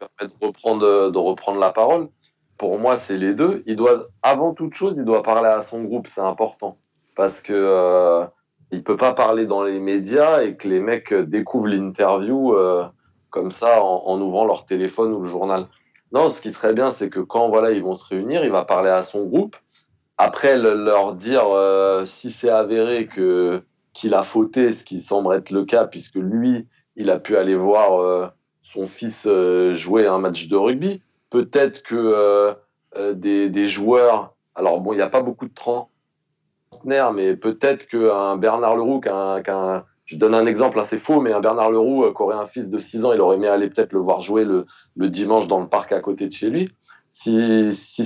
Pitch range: 95-120 Hz